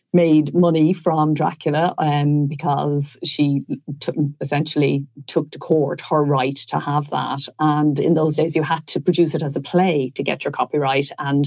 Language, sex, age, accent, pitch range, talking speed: English, female, 30-49, Irish, 145-170 Hz, 180 wpm